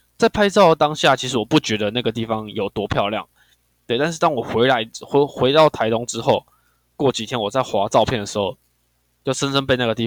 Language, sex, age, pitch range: Chinese, male, 10-29, 105-140 Hz